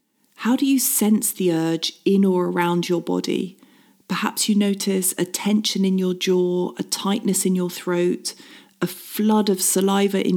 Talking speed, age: 170 wpm, 40-59